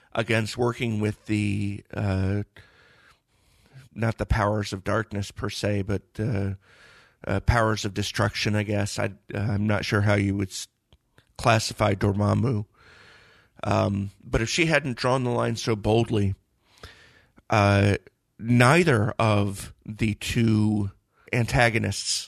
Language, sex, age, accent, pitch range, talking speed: English, male, 50-69, American, 100-115 Hz, 125 wpm